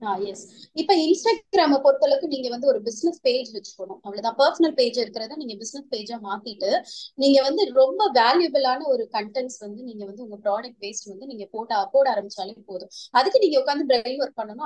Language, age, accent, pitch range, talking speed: Tamil, 20-39, native, 225-305 Hz, 55 wpm